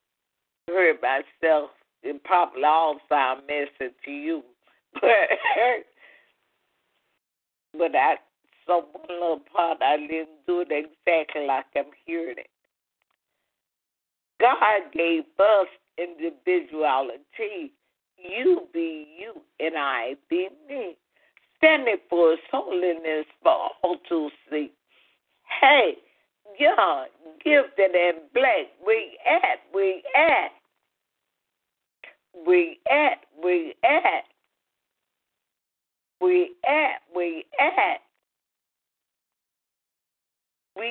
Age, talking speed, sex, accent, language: 50-69, 85 wpm, female, American, English